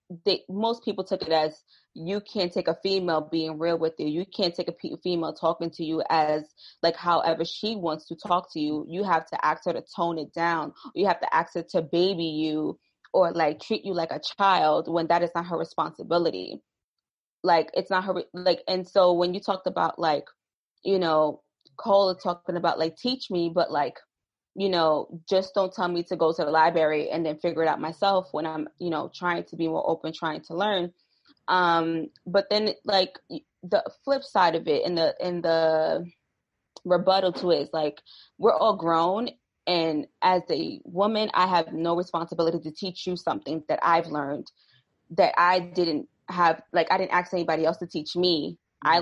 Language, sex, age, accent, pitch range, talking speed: English, female, 20-39, American, 160-185 Hz, 200 wpm